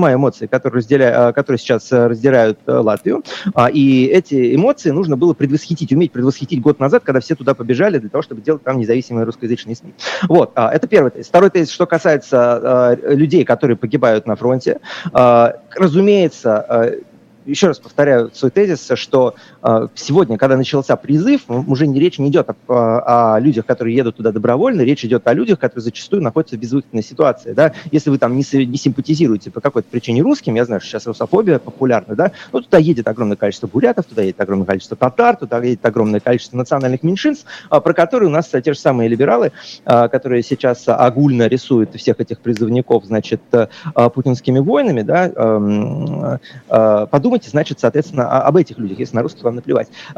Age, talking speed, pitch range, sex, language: 30-49, 180 wpm, 120-155 Hz, male, Russian